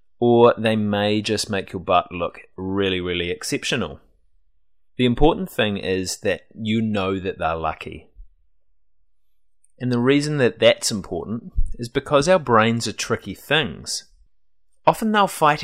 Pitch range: 85-130 Hz